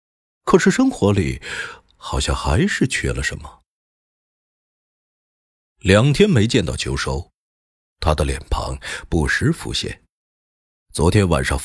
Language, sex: Chinese, male